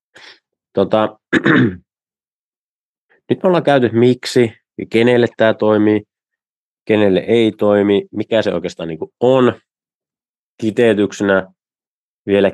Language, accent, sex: Finnish, native, male